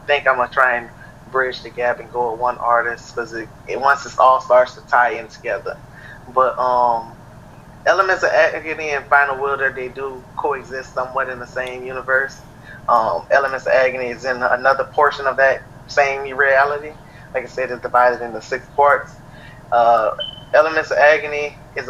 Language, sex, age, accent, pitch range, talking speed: English, male, 20-39, American, 125-145 Hz, 175 wpm